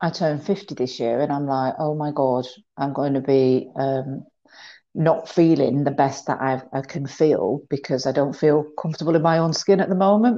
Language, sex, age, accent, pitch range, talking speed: English, female, 40-59, British, 140-175 Hz, 210 wpm